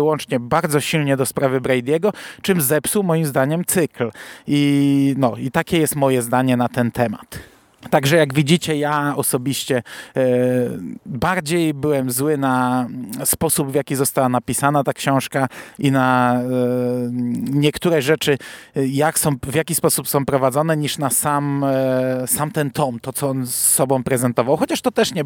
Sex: male